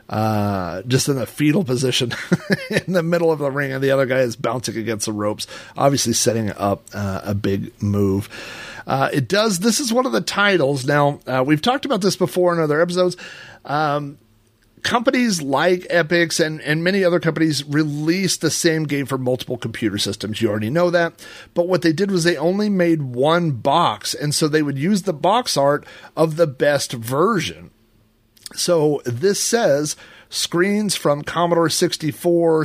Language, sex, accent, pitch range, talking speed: English, male, American, 120-170 Hz, 180 wpm